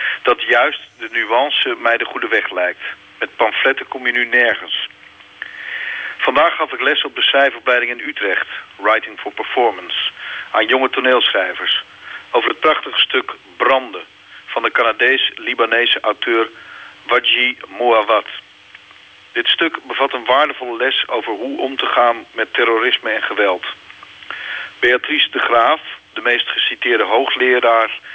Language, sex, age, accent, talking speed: Dutch, male, 40-59, Dutch, 135 wpm